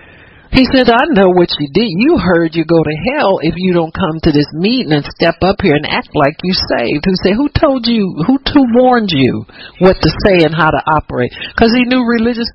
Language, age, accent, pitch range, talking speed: English, 50-69, American, 120-175 Hz, 225 wpm